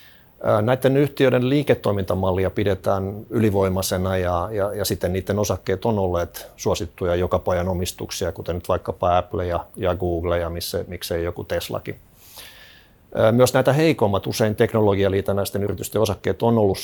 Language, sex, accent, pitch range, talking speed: Finnish, male, native, 90-110 Hz, 130 wpm